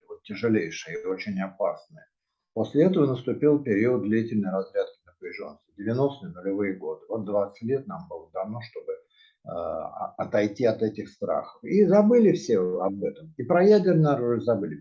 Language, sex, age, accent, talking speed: Russian, male, 50-69, native, 145 wpm